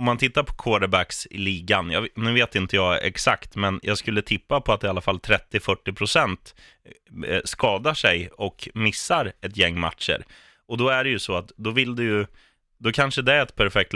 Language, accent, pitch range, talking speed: Swedish, native, 90-110 Hz, 205 wpm